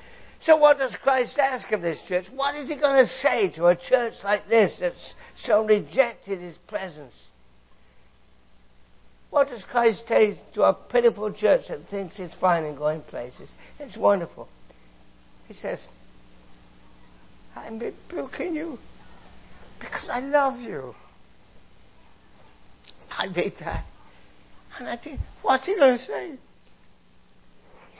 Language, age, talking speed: English, 60-79, 135 wpm